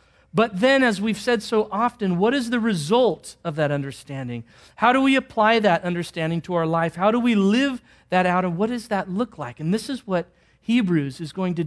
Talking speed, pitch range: 220 wpm, 150-215 Hz